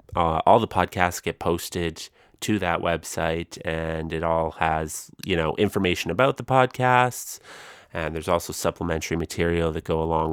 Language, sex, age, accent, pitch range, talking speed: English, male, 30-49, American, 80-110 Hz, 155 wpm